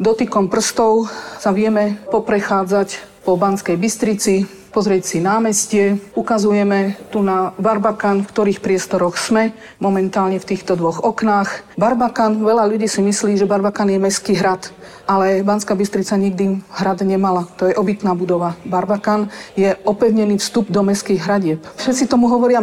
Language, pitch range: Slovak, 190-220 Hz